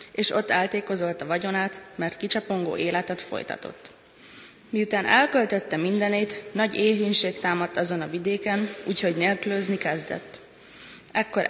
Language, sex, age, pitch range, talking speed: Hungarian, female, 20-39, 185-210 Hz, 115 wpm